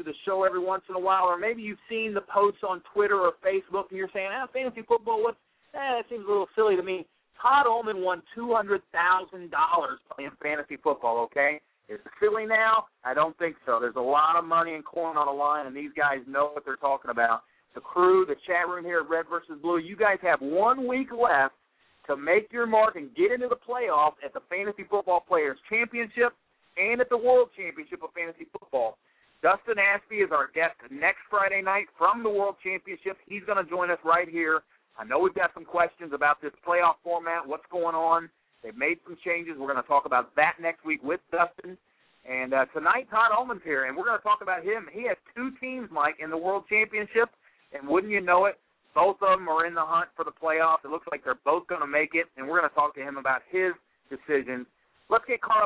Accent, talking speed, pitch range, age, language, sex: American, 225 wpm, 160-215 Hz, 40-59, English, male